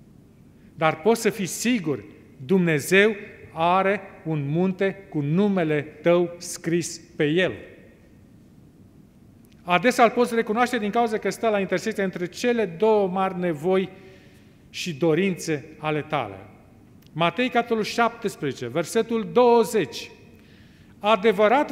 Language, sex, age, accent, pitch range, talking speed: Romanian, male, 40-59, native, 155-220 Hz, 110 wpm